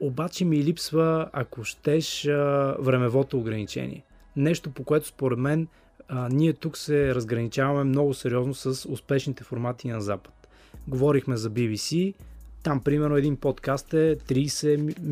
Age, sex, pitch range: 20-39, male, 125-155 Hz